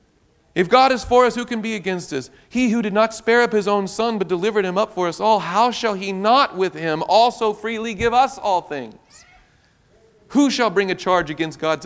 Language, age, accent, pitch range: English, 40-59, American, 160-235 Hz